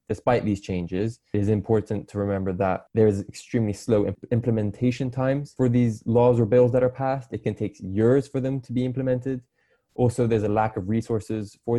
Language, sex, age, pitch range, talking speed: English, male, 20-39, 95-120 Hz, 200 wpm